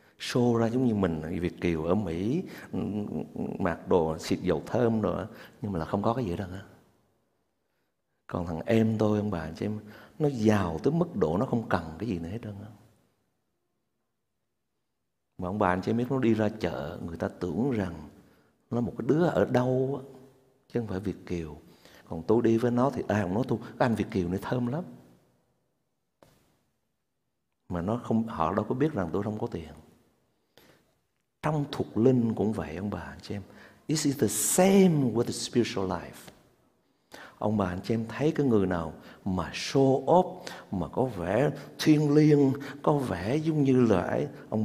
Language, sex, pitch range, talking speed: Vietnamese, male, 95-130 Hz, 185 wpm